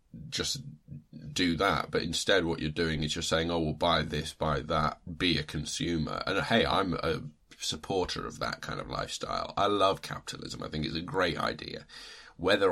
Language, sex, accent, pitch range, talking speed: English, male, British, 75-85 Hz, 190 wpm